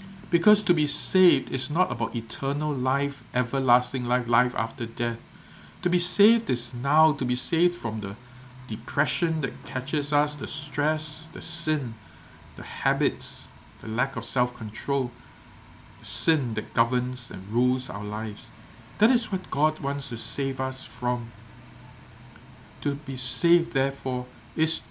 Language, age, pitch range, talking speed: English, 50-69, 115-145 Hz, 140 wpm